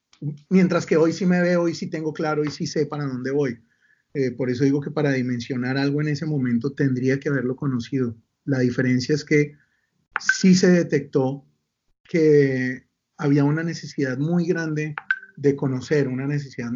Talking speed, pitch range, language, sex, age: 170 wpm, 130-155 Hz, Spanish, male, 30-49